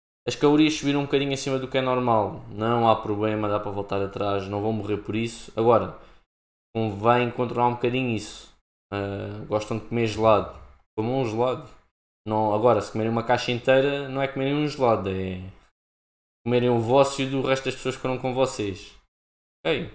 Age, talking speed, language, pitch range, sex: 20-39, 190 wpm, Portuguese, 105-130 Hz, male